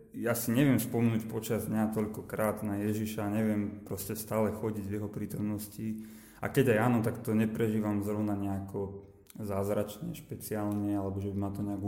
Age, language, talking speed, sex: 20-39, Slovak, 170 wpm, male